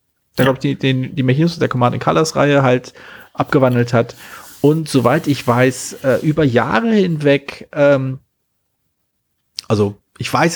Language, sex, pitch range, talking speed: German, male, 115-150 Hz, 140 wpm